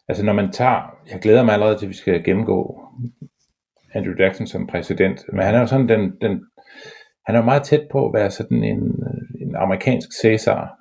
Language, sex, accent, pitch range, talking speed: Danish, male, native, 90-120 Hz, 180 wpm